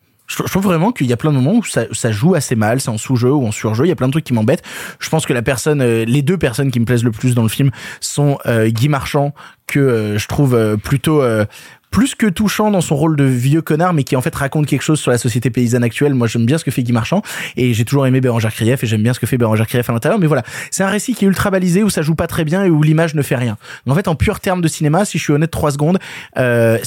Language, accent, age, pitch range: French, French, 20-39, 120-160 Hz